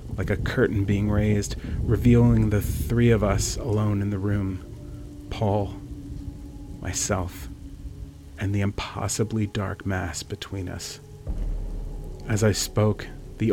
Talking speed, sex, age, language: 120 wpm, male, 30-49, English